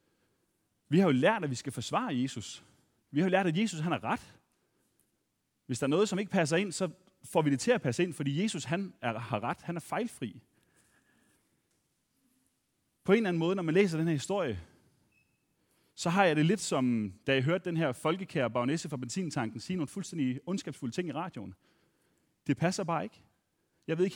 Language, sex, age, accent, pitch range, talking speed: Danish, male, 30-49, native, 125-170 Hz, 205 wpm